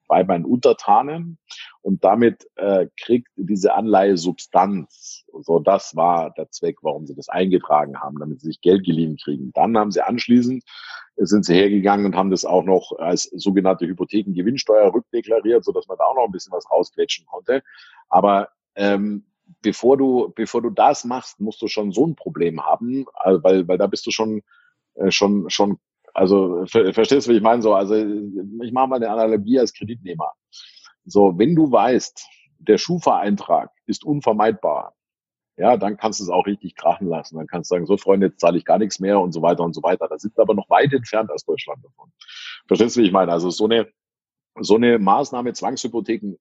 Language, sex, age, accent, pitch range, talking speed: German, male, 50-69, German, 95-120 Hz, 195 wpm